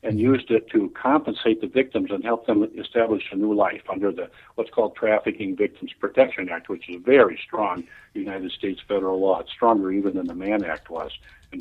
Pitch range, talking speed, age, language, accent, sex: 100-150 Hz, 205 wpm, 50-69, English, American, male